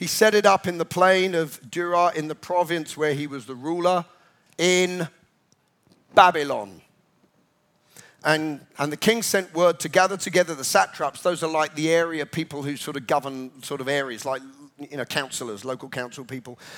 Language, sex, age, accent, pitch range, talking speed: English, male, 40-59, British, 155-200 Hz, 180 wpm